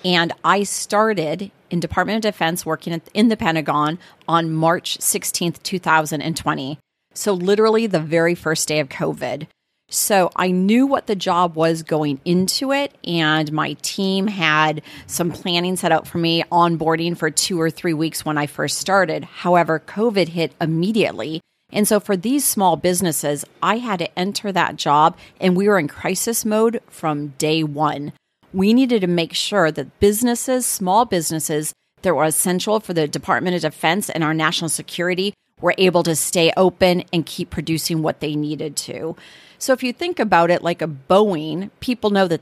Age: 40-59